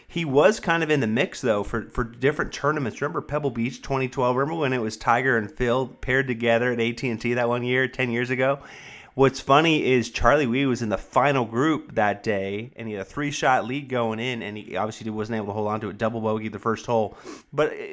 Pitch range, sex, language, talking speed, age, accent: 115-140 Hz, male, English, 235 wpm, 30-49, American